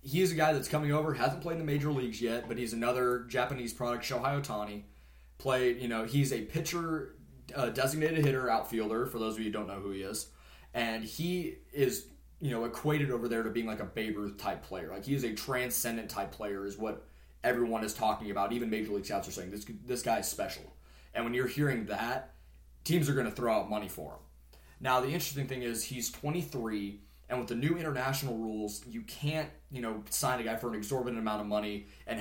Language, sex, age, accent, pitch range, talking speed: English, male, 20-39, American, 100-130 Hz, 225 wpm